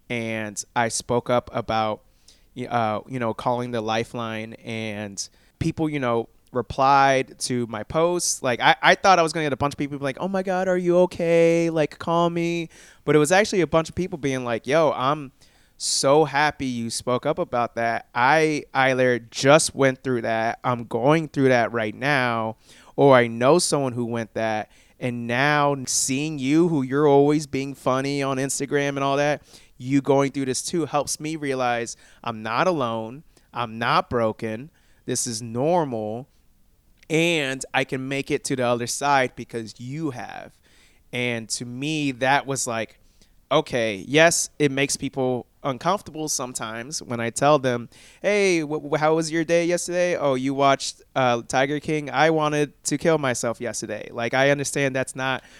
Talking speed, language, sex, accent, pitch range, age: 180 wpm, English, male, American, 120-155 Hz, 20-39